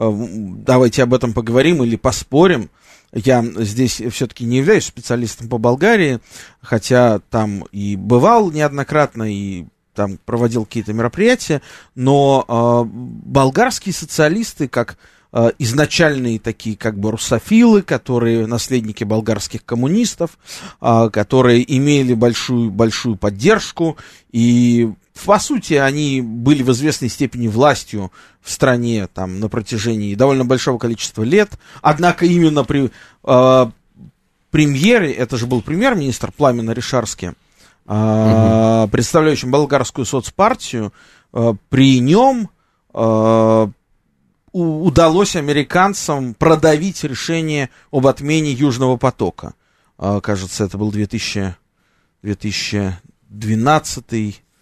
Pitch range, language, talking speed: 110-145 Hz, Russian, 100 wpm